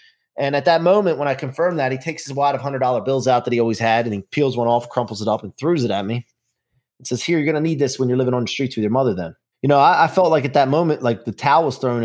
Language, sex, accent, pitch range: English, male, American, 115-145 Hz